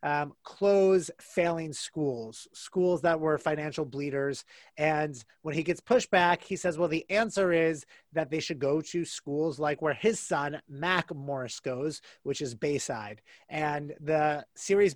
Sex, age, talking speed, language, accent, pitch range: male, 30-49, 160 wpm, English, American, 145-175 Hz